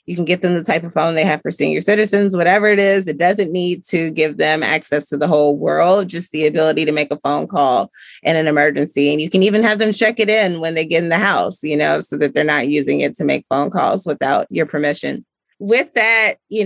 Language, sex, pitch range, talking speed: English, female, 155-210 Hz, 255 wpm